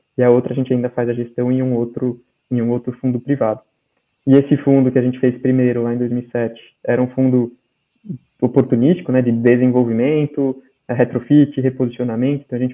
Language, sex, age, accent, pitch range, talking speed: Portuguese, male, 20-39, Brazilian, 120-135 Hz, 190 wpm